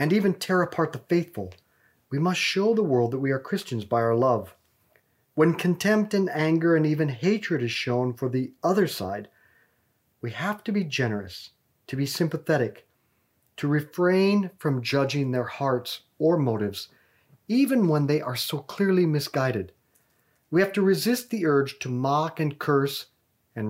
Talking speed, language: 165 wpm, English